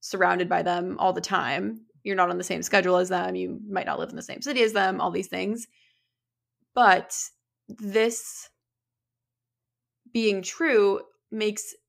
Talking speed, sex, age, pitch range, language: 160 wpm, female, 20-39, 185-240 Hz, English